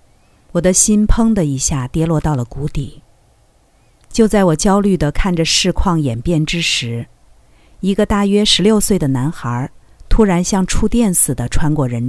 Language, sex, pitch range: Chinese, female, 145-195 Hz